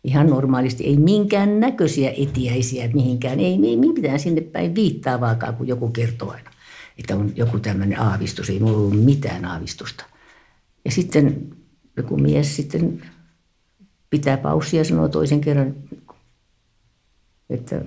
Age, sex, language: 60-79, female, Finnish